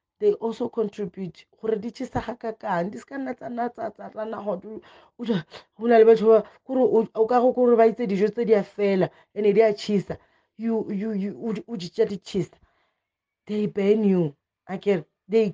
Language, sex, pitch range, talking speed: English, female, 175-225 Hz, 50 wpm